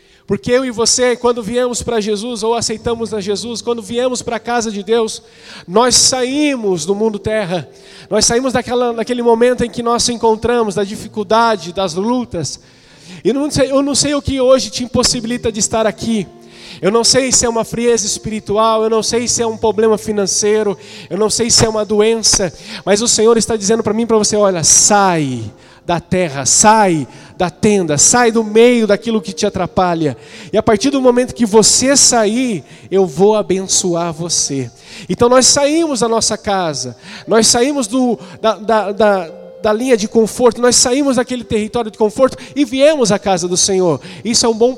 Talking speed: 190 wpm